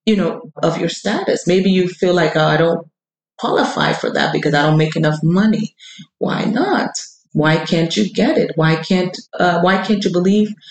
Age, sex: 30-49, female